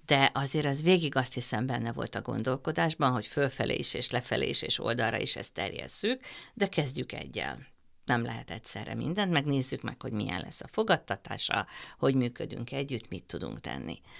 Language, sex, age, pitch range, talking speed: Hungarian, female, 50-69, 120-175 Hz, 165 wpm